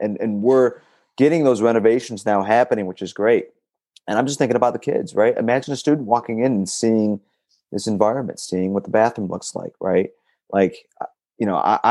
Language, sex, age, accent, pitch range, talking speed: English, male, 30-49, American, 105-165 Hz, 195 wpm